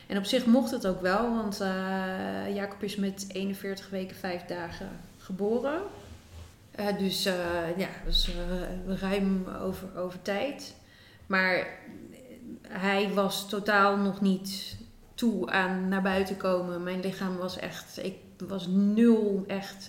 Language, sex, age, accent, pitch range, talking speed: Dutch, female, 30-49, Dutch, 175-195 Hz, 140 wpm